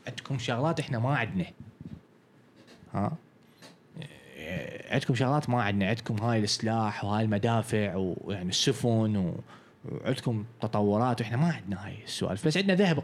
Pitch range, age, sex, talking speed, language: 115-160 Hz, 20-39, male, 125 wpm, Arabic